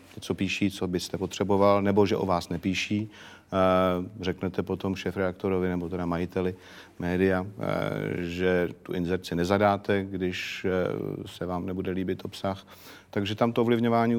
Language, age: Slovak, 40-59